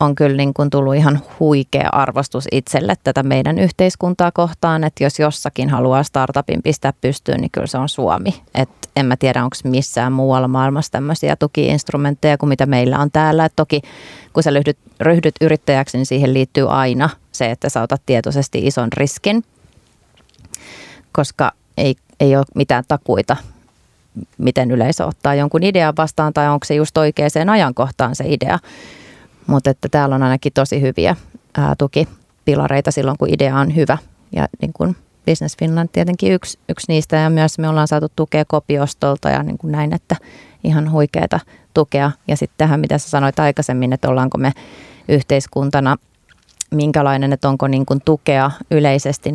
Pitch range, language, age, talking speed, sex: 130-150 Hz, Finnish, 30-49, 160 wpm, female